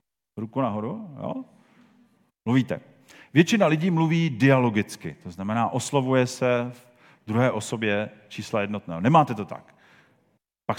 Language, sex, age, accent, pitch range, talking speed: Czech, male, 40-59, native, 120-165 Hz, 115 wpm